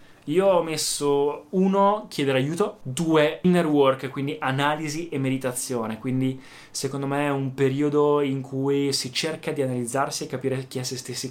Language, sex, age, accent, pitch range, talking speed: Italian, male, 20-39, native, 120-145 Hz, 165 wpm